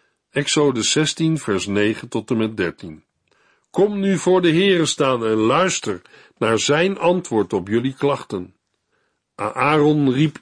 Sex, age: male, 50-69